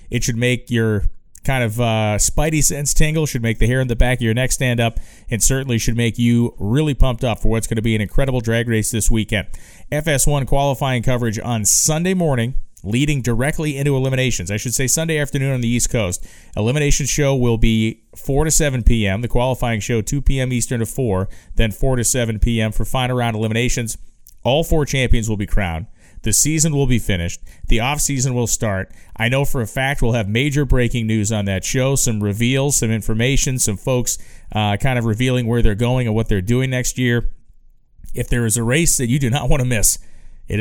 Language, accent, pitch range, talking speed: English, American, 110-135 Hz, 215 wpm